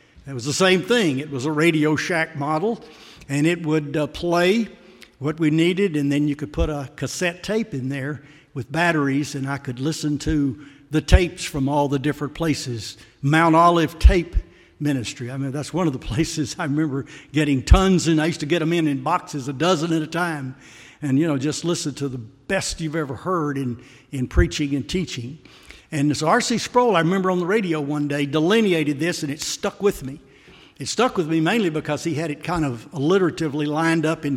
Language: English